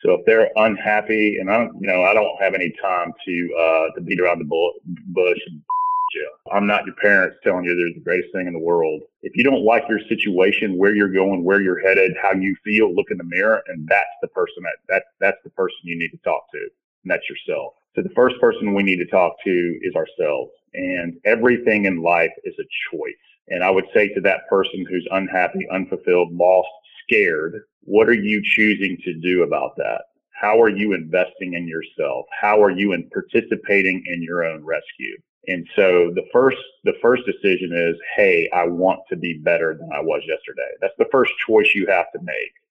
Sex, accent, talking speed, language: male, American, 210 wpm, English